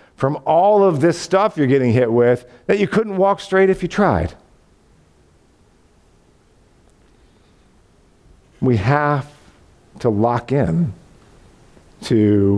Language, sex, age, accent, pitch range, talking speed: English, male, 50-69, American, 125-190 Hz, 110 wpm